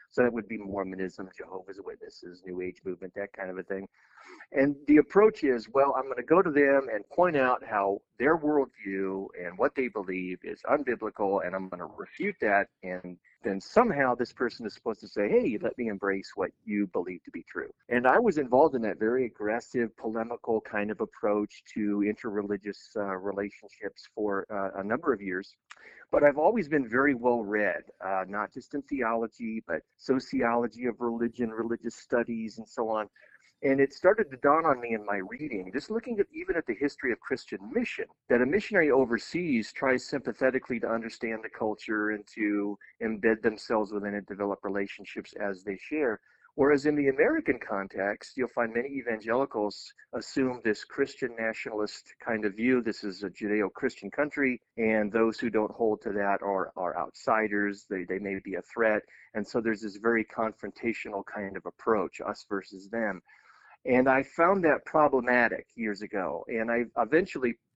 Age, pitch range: 40-59, 100-130 Hz